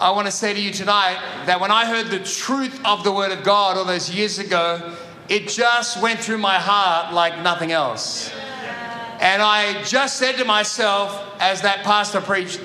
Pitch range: 185-225 Hz